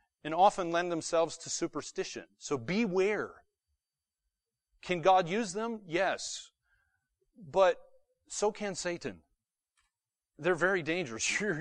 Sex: male